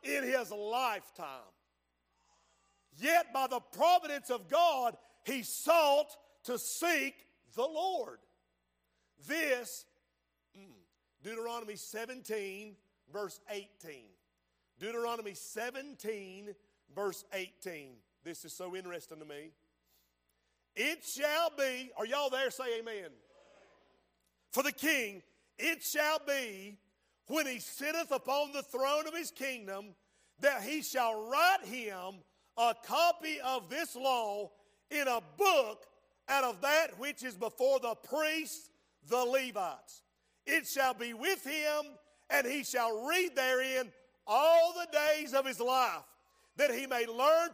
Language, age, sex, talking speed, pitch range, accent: English, 50-69, male, 120 wpm, 205-290 Hz, American